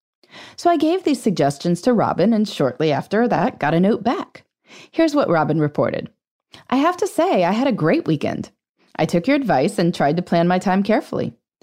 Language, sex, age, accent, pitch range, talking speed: English, female, 30-49, American, 155-230 Hz, 200 wpm